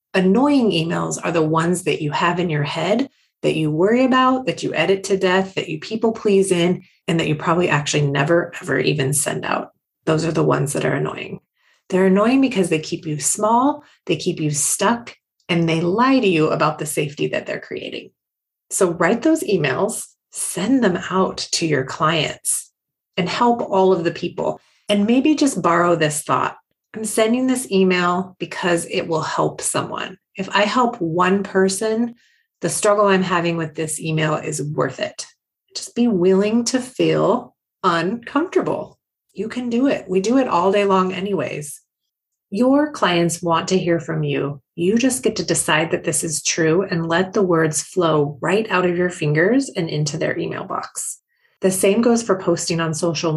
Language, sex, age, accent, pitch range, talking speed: English, female, 30-49, American, 165-215 Hz, 185 wpm